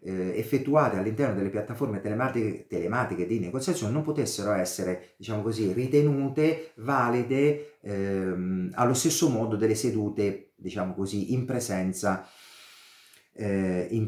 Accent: native